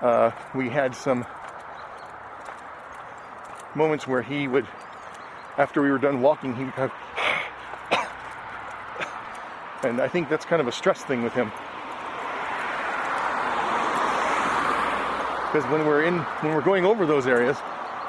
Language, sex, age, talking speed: English, male, 40-59, 125 wpm